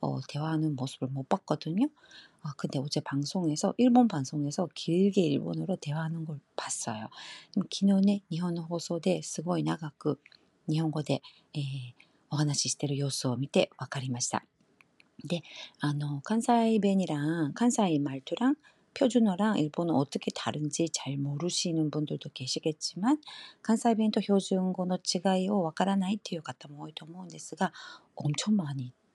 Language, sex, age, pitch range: Korean, female, 40-59, 145-200 Hz